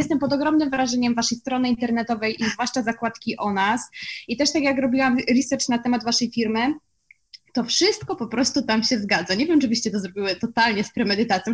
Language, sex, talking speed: Polish, female, 200 wpm